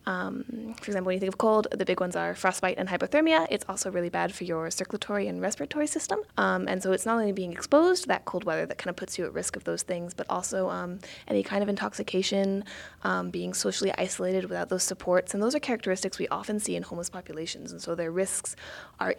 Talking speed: 240 wpm